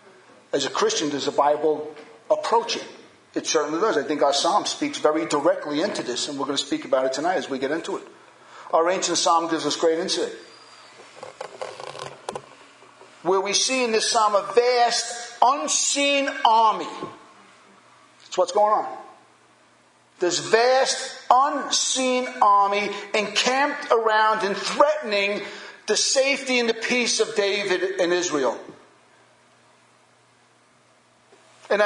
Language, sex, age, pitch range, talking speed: English, male, 50-69, 185-260 Hz, 135 wpm